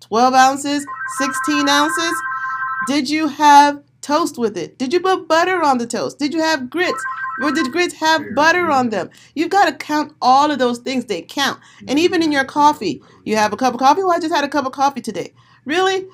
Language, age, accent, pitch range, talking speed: English, 40-59, American, 230-295 Hz, 225 wpm